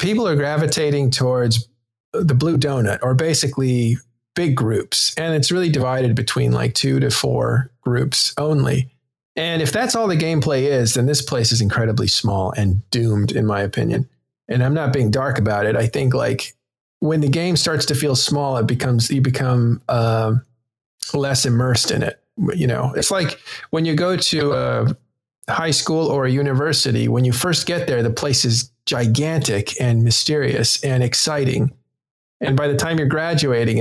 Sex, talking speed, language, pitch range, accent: male, 175 wpm, English, 115-145 Hz, American